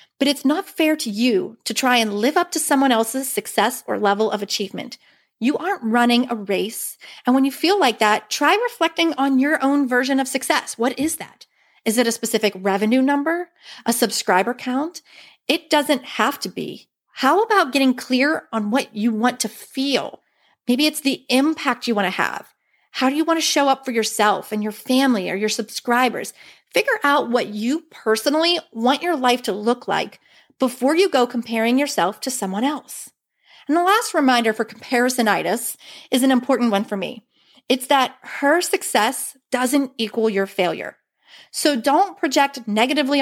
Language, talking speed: English, 180 wpm